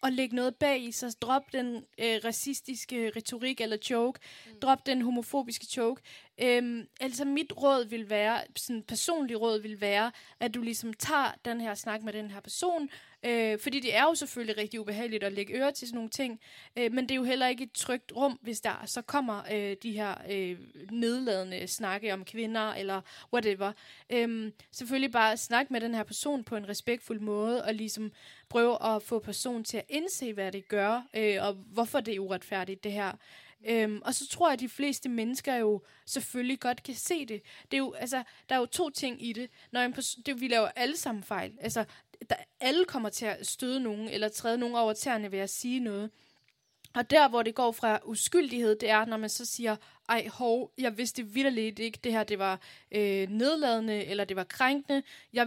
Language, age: Danish, 20-39